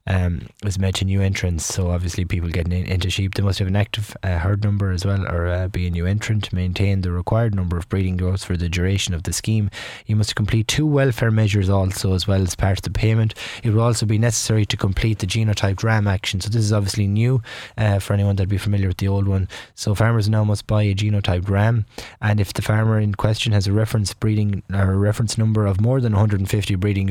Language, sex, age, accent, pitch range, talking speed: English, male, 20-39, Irish, 95-110 Hz, 245 wpm